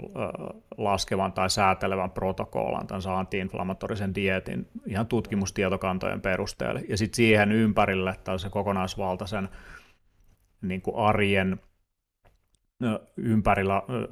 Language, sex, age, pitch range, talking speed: Finnish, male, 30-49, 95-105 Hz, 85 wpm